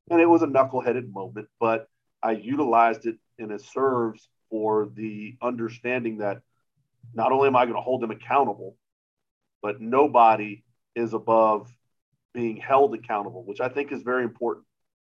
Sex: male